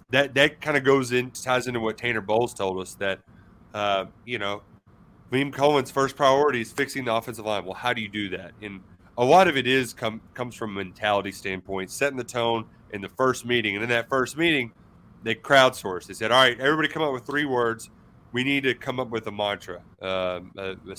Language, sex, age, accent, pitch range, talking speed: English, male, 30-49, American, 105-130 Hz, 220 wpm